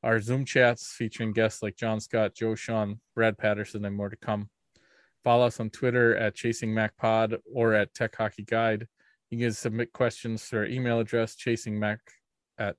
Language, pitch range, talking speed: English, 110-120 Hz, 190 wpm